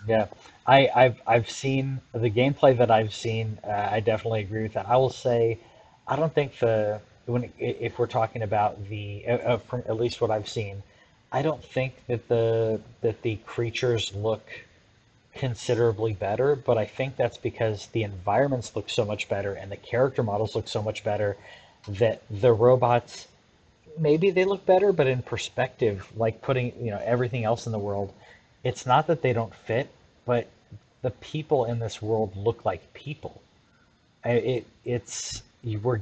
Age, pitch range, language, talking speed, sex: 30-49, 105-120 Hz, English, 170 wpm, male